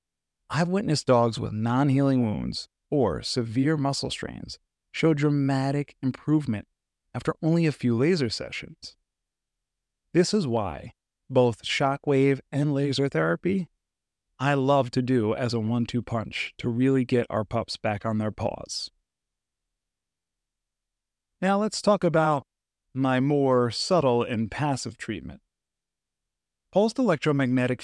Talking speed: 120 wpm